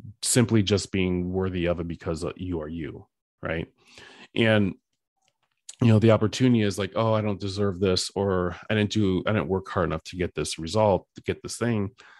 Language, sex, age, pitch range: English, male, 30-49, 90-110 Hz